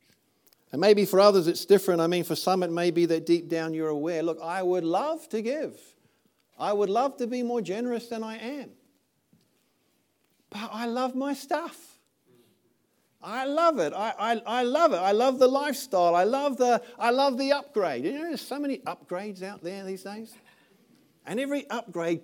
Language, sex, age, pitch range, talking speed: English, male, 50-69, 170-245 Hz, 185 wpm